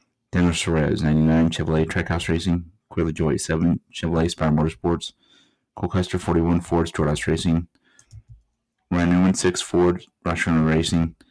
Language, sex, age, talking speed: English, male, 30-49, 115 wpm